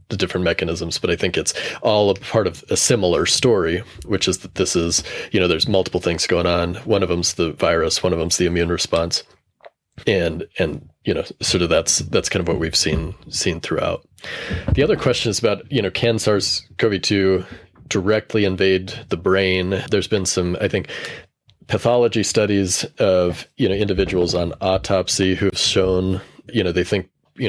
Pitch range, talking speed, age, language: 90-105 Hz, 190 wpm, 30-49, English